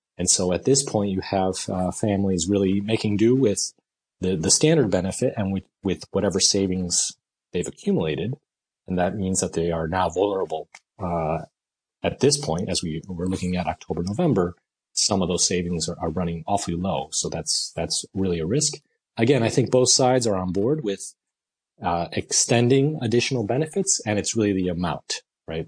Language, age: English, 30-49